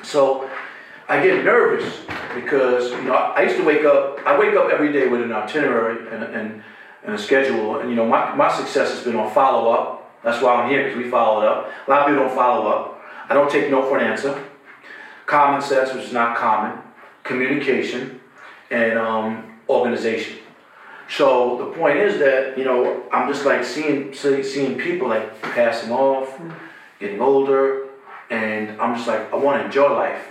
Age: 40-59